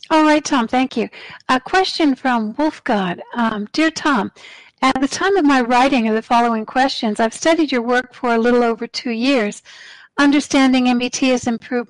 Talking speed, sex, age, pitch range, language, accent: 175 wpm, female, 60-79, 235-280 Hz, English, American